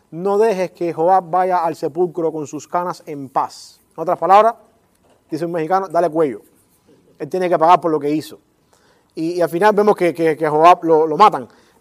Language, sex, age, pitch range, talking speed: English, male, 30-49, 160-210 Hz, 205 wpm